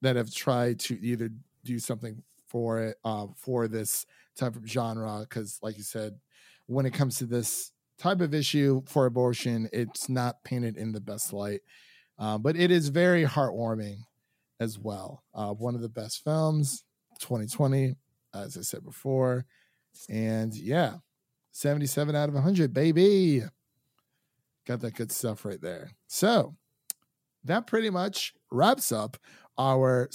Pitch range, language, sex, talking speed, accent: 115-150 Hz, English, male, 150 wpm, American